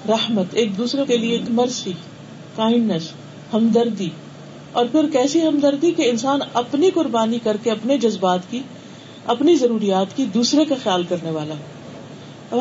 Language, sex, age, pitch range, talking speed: Urdu, female, 50-69, 185-240 Hz, 150 wpm